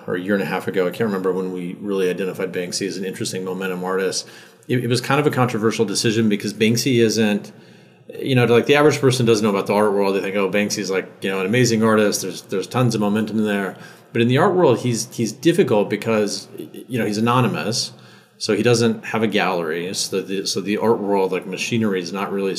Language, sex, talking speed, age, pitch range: English, male, 235 wpm, 30-49, 95-115 Hz